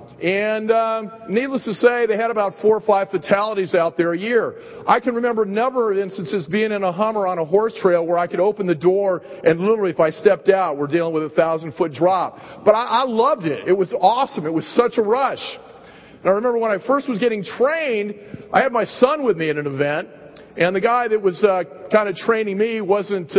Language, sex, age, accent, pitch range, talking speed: English, male, 40-59, American, 180-220 Hz, 230 wpm